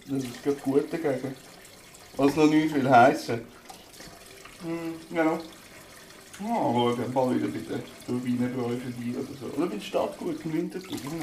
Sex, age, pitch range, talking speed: male, 60-79, 135-180 Hz, 175 wpm